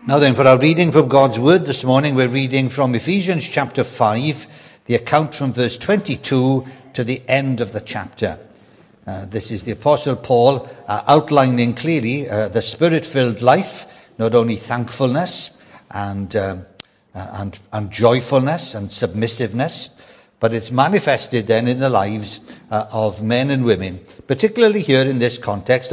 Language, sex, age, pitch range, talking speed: English, male, 60-79, 105-135 Hz, 155 wpm